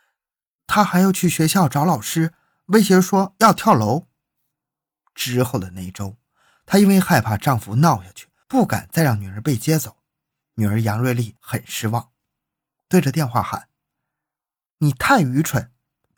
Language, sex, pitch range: Chinese, male, 115-155 Hz